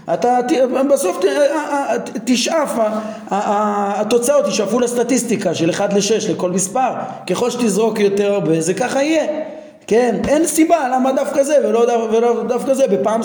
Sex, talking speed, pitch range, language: male, 135 wpm, 200-255 Hz, Hebrew